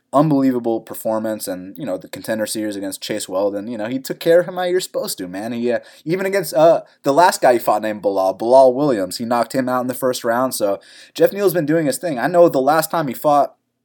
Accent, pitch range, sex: American, 115-175 Hz, male